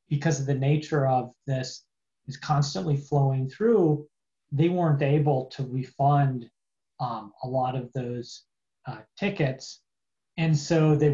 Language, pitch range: English, 140-165 Hz